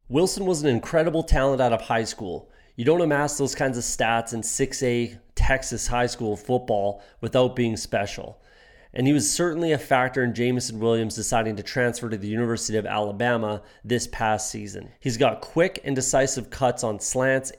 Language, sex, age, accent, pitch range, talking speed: English, male, 30-49, American, 115-140 Hz, 180 wpm